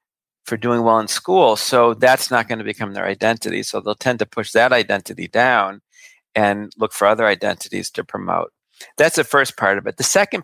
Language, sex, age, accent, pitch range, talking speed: English, male, 40-59, American, 100-115 Hz, 205 wpm